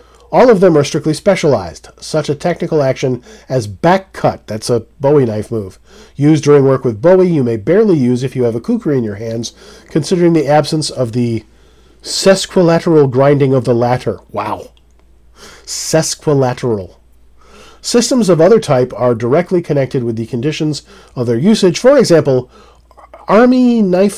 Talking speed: 160 wpm